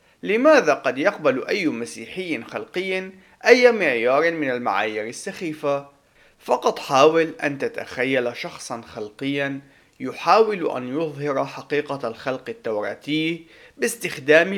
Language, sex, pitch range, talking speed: Arabic, male, 130-180 Hz, 100 wpm